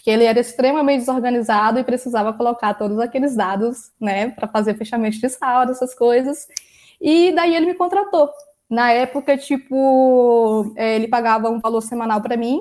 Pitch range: 225-285 Hz